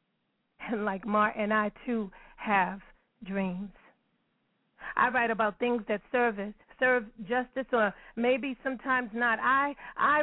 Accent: American